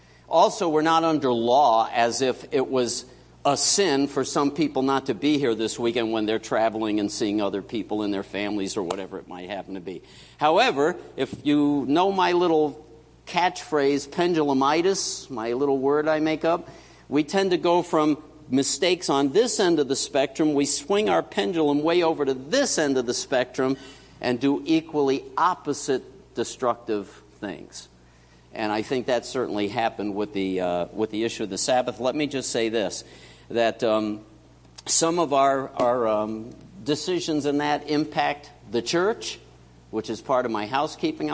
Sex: male